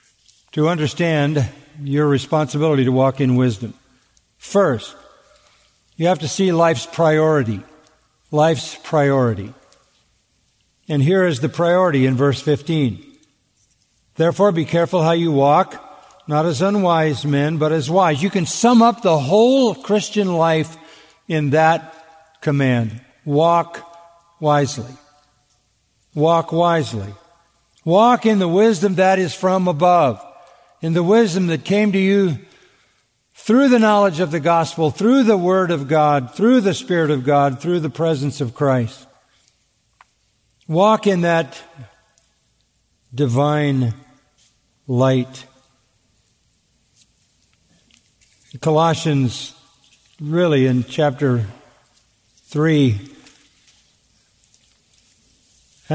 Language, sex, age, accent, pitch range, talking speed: English, male, 50-69, American, 130-170 Hz, 105 wpm